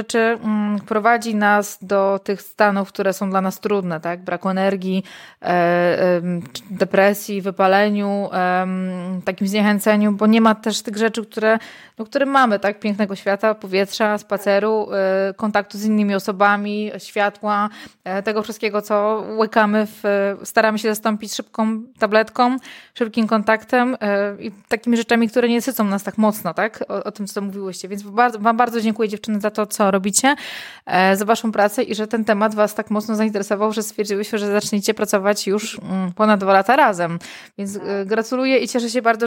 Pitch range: 200-225 Hz